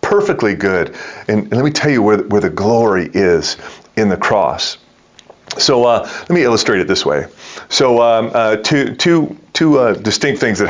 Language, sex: English, male